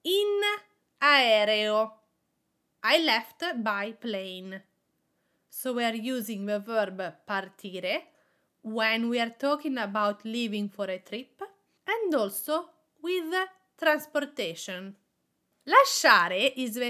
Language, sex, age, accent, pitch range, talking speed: English, female, 30-49, Italian, 215-295 Hz, 105 wpm